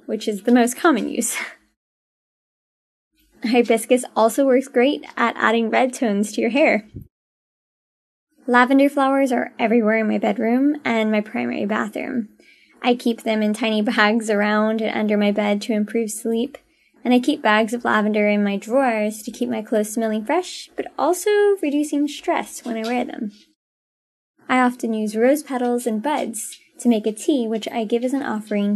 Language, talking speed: English, 170 wpm